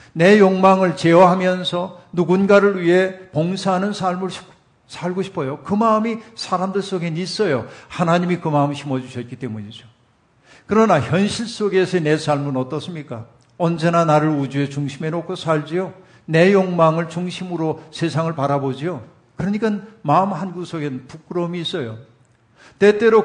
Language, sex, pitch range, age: Korean, male, 135-185 Hz, 50-69